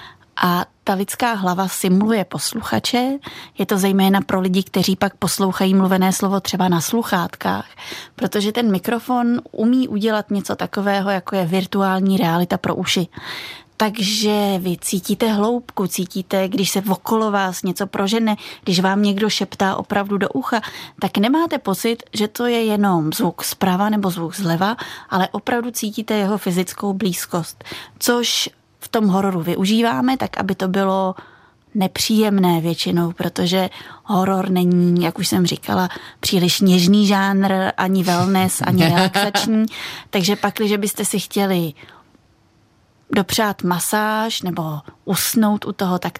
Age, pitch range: 20-39, 185-210 Hz